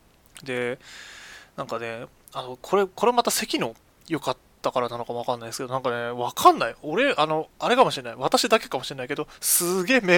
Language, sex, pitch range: Japanese, male, 130-190 Hz